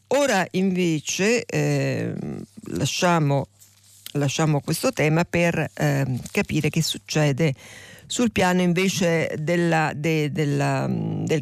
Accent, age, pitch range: native, 50-69, 145-175 Hz